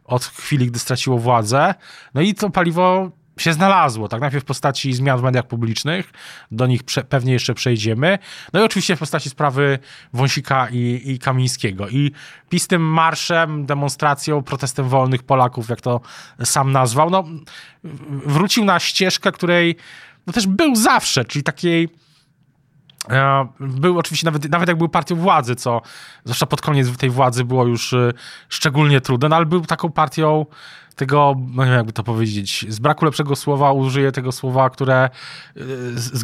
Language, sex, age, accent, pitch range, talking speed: Polish, male, 20-39, native, 125-155 Hz, 155 wpm